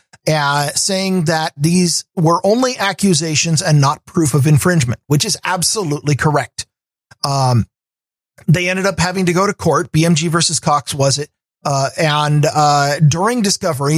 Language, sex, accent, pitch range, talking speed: English, male, American, 145-175 Hz, 150 wpm